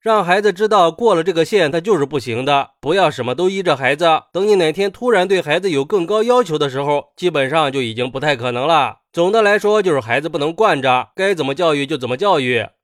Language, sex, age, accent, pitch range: Chinese, male, 20-39, native, 145-200 Hz